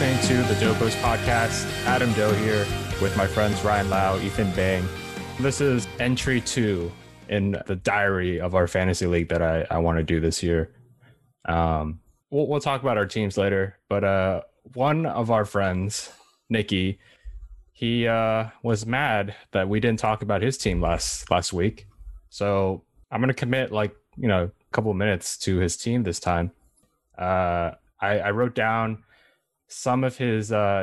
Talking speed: 170 wpm